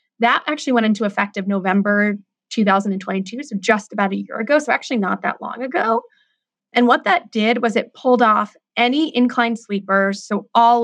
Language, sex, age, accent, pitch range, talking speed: English, female, 20-39, American, 210-255 Hz, 185 wpm